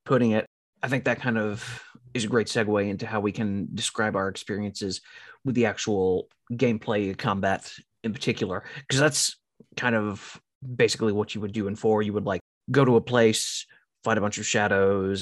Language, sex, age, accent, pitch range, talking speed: English, male, 30-49, American, 100-125 Hz, 190 wpm